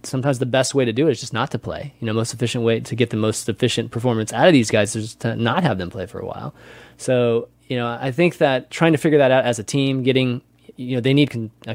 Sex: male